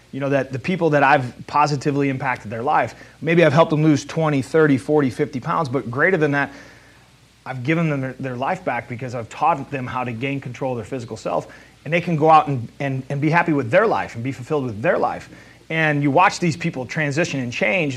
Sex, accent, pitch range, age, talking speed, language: male, American, 125-150 Hz, 30-49, 235 wpm, English